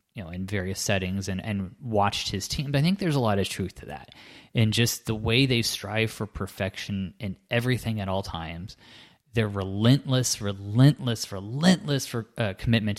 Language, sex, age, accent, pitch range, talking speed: English, male, 20-39, American, 100-120 Hz, 185 wpm